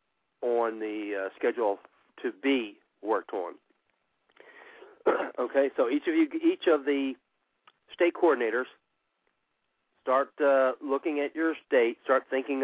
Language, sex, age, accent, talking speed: English, male, 50-69, American, 125 wpm